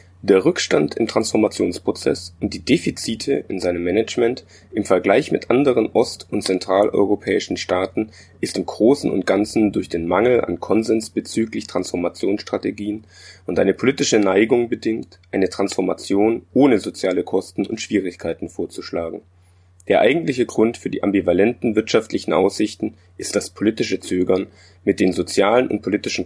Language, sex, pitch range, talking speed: German, male, 90-110 Hz, 135 wpm